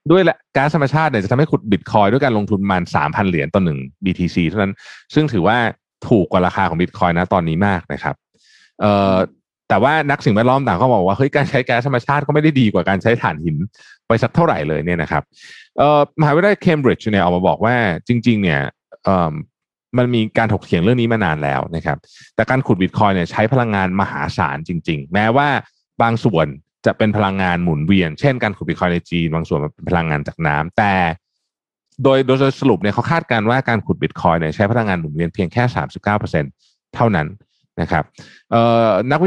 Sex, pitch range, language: male, 90-125 Hz, Thai